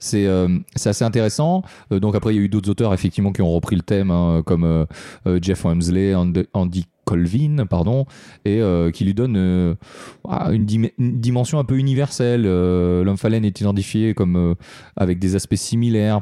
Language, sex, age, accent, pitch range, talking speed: French, male, 30-49, French, 95-115 Hz, 200 wpm